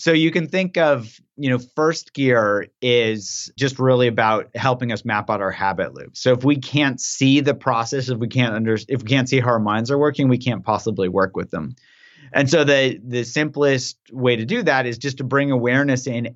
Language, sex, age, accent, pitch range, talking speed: English, male, 30-49, American, 110-135 Hz, 225 wpm